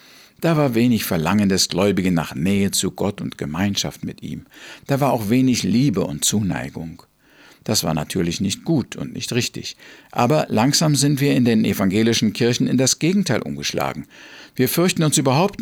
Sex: male